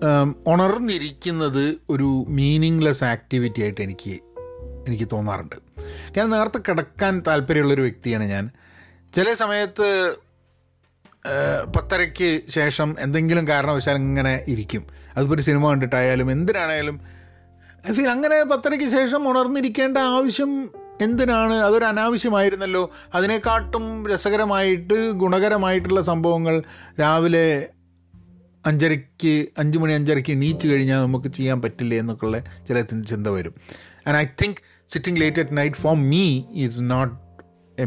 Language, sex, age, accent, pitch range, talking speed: Malayalam, male, 30-49, native, 115-190 Hz, 105 wpm